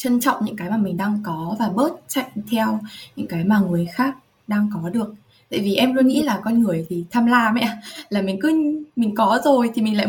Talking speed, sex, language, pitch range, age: 245 wpm, female, Vietnamese, 195-255 Hz, 20-39